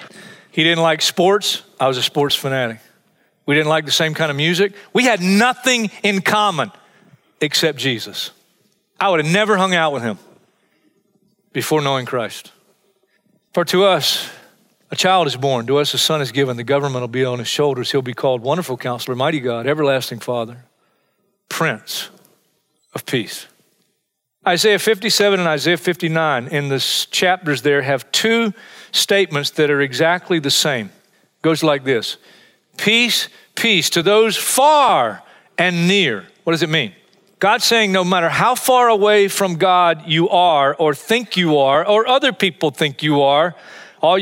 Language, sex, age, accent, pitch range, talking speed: English, male, 40-59, American, 140-200 Hz, 165 wpm